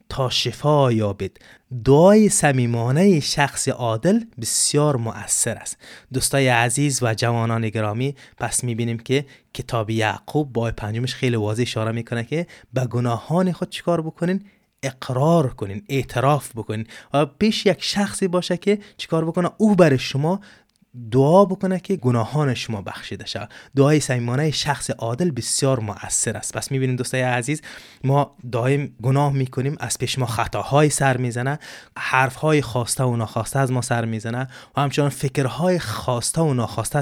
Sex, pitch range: male, 115-145 Hz